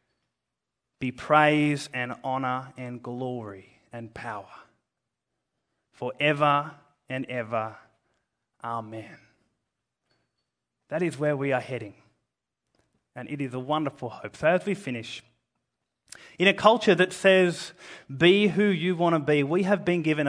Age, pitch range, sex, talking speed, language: 20-39, 120-150 Hz, male, 130 wpm, English